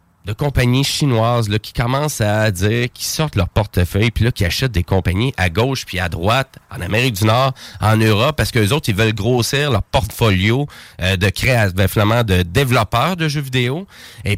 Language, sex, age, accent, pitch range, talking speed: French, male, 30-49, Canadian, 100-135 Hz, 200 wpm